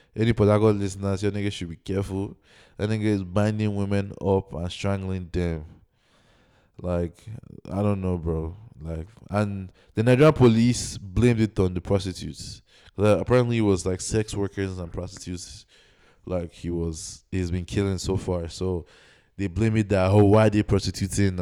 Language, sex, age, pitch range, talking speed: English, male, 20-39, 90-115 Hz, 170 wpm